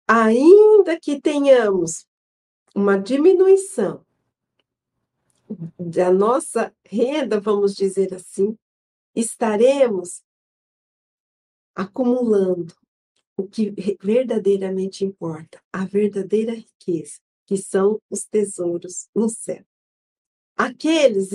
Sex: female